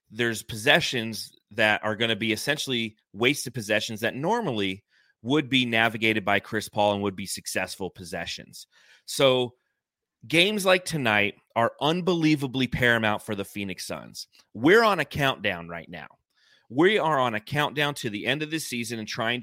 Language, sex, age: English, male, 30-49